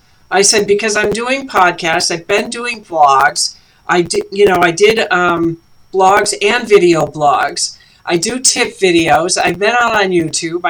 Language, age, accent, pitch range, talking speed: English, 50-69, American, 165-210 Hz, 155 wpm